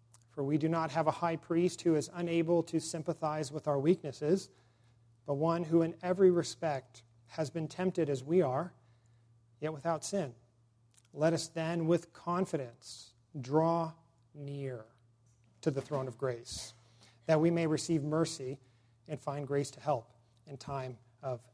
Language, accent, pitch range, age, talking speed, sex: English, American, 120-160 Hz, 40-59, 155 wpm, male